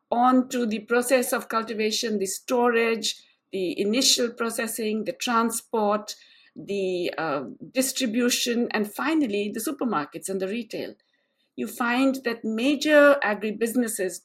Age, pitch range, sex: 50-69, 205-270 Hz, female